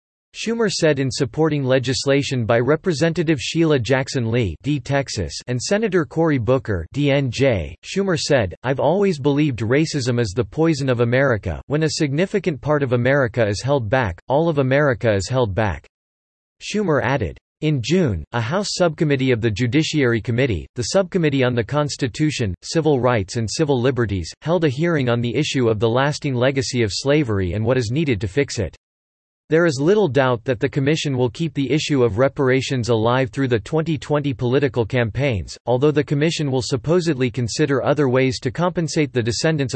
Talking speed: 170 wpm